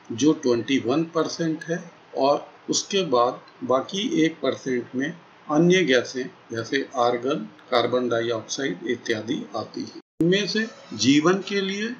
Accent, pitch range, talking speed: native, 125-175 Hz, 110 wpm